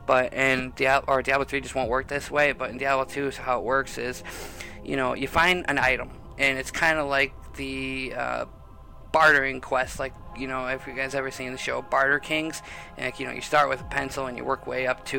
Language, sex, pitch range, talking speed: English, male, 125-140 Hz, 235 wpm